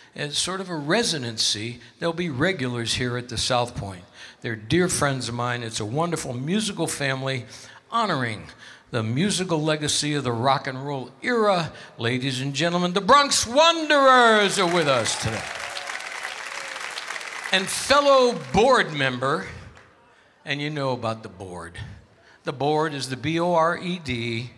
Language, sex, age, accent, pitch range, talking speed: English, male, 60-79, American, 120-165 Hz, 140 wpm